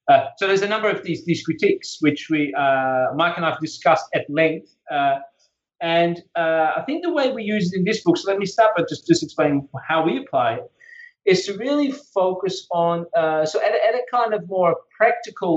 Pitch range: 155-195 Hz